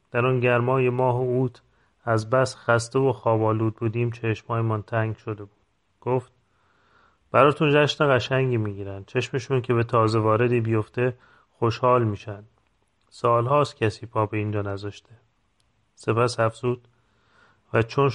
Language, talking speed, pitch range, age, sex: Persian, 130 wpm, 105-125 Hz, 30-49, male